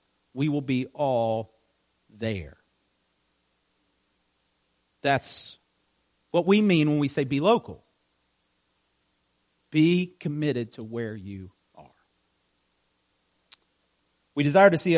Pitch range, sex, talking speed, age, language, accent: 115-180 Hz, male, 95 wpm, 40-59, English, American